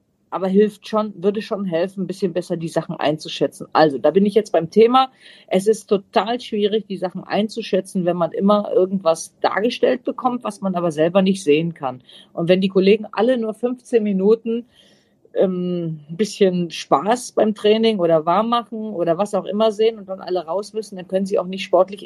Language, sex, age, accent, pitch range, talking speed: German, female, 40-59, German, 170-220 Hz, 195 wpm